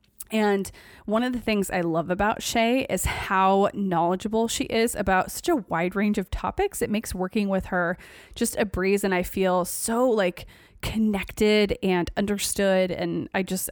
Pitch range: 185-230 Hz